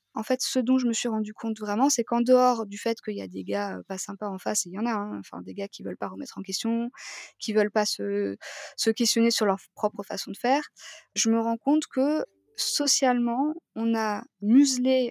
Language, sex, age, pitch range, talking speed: French, female, 20-39, 205-250 Hz, 235 wpm